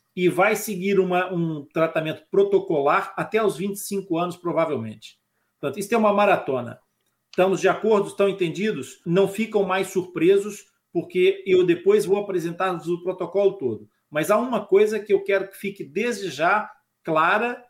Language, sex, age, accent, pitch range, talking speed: Portuguese, male, 50-69, Brazilian, 165-210 Hz, 155 wpm